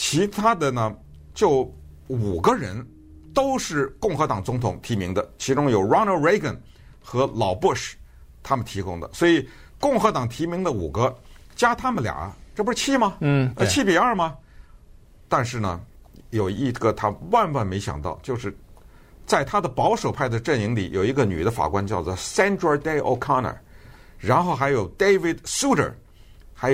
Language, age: Chinese, 60-79